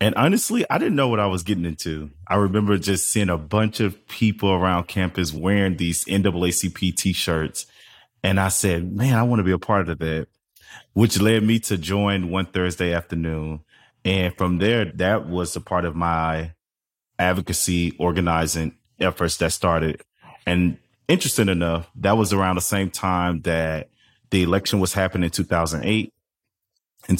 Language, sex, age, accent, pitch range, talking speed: English, male, 30-49, American, 85-100 Hz, 165 wpm